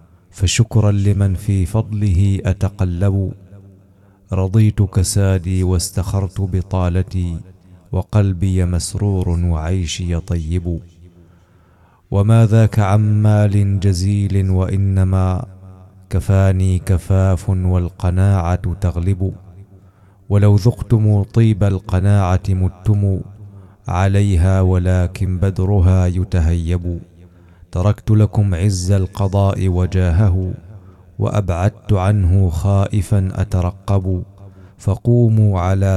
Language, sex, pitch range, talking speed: Arabic, male, 90-100 Hz, 70 wpm